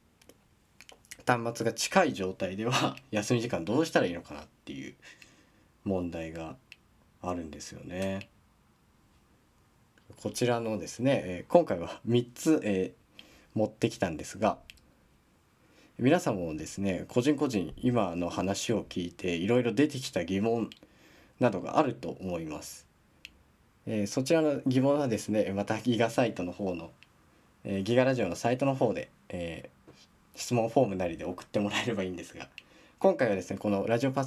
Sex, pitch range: male, 95-125 Hz